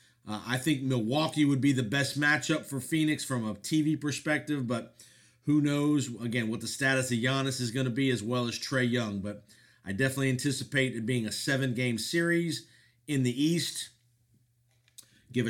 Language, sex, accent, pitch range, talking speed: English, male, American, 120-140 Hz, 180 wpm